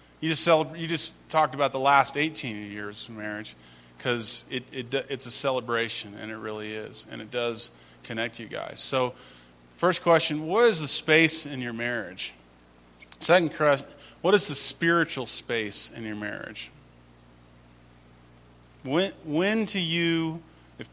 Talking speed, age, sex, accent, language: 145 wpm, 30-49, male, American, English